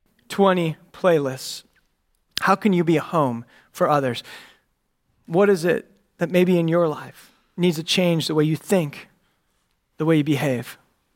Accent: American